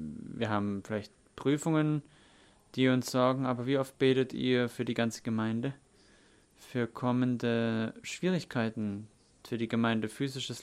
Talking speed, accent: 130 wpm, German